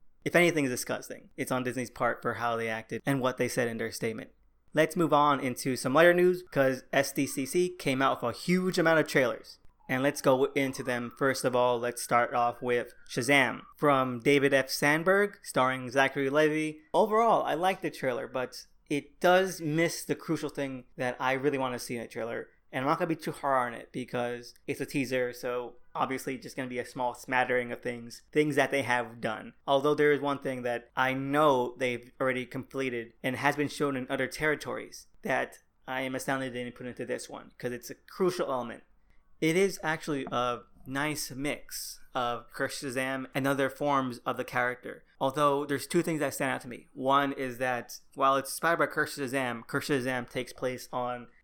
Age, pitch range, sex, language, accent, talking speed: 20-39, 125-145 Hz, male, English, American, 205 wpm